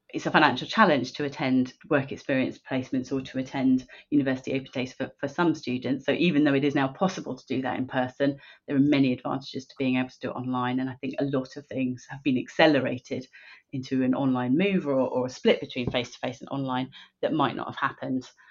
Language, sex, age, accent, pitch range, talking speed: English, female, 30-49, British, 135-155 Hz, 220 wpm